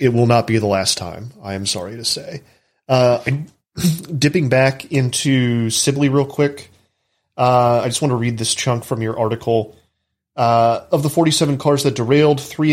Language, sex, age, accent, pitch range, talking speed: English, male, 30-49, American, 115-145 Hz, 180 wpm